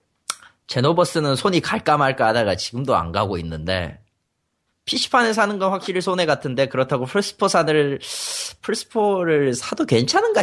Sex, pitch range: male, 105-165 Hz